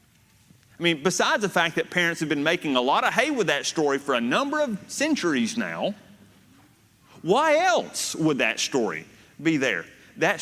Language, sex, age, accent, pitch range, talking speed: English, male, 30-49, American, 120-190 Hz, 180 wpm